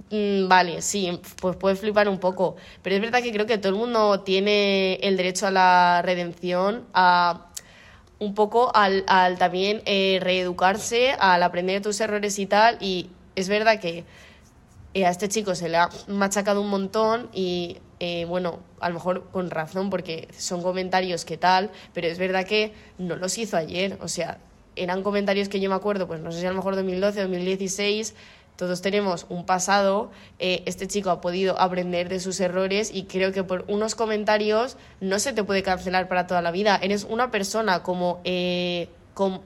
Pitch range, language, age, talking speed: 180-205 Hz, Spanish, 20-39, 185 wpm